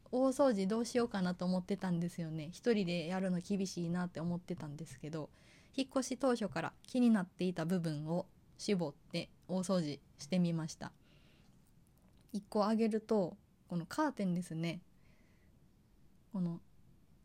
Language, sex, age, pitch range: Japanese, female, 20-39, 170-205 Hz